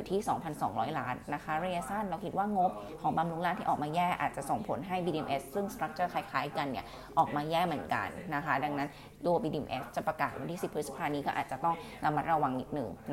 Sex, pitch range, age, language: female, 150-185 Hz, 20-39, Thai